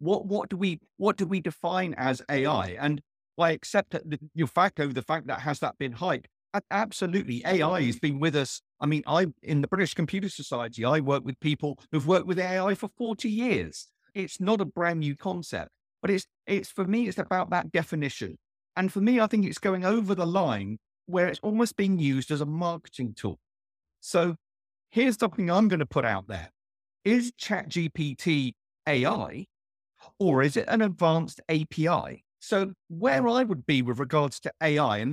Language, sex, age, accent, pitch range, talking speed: English, male, 50-69, British, 135-195 Hz, 190 wpm